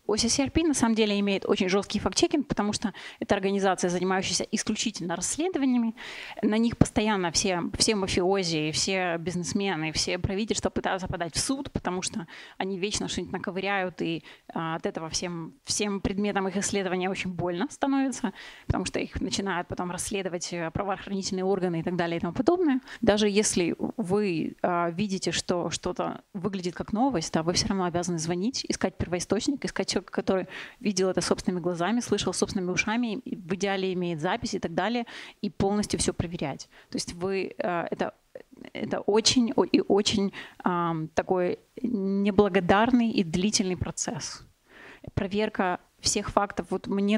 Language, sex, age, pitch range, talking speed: Russian, female, 20-39, 180-215 Hz, 150 wpm